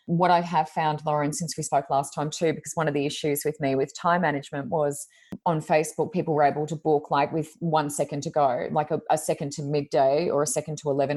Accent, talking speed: Australian, 245 wpm